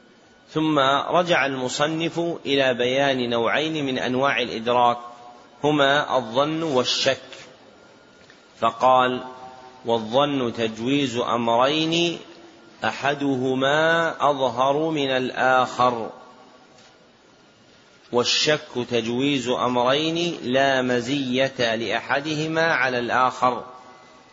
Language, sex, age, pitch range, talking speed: Arabic, male, 30-49, 120-140 Hz, 70 wpm